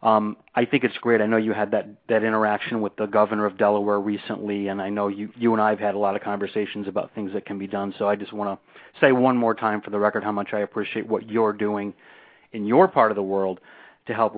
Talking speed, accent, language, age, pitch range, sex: 270 wpm, American, English, 40-59, 105-120 Hz, male